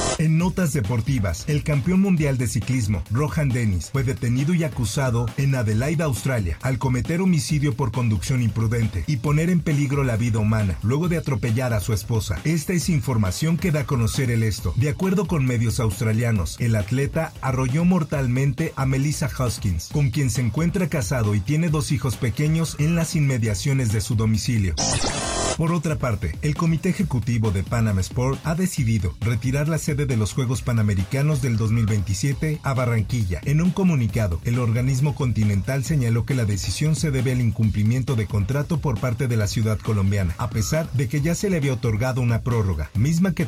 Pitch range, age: 110-150 Hz, 50-69